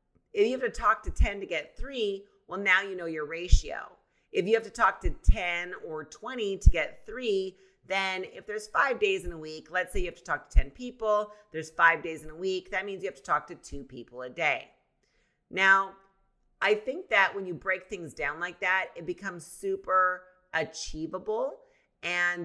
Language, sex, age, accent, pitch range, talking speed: English, female, 40-59, American, 155-225 Hz, 210 wpm